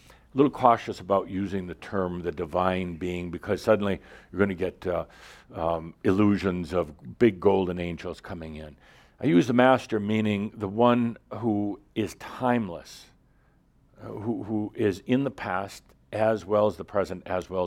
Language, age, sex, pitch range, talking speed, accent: English, 60-79, male, 95-120 Hz, 165 wpm, American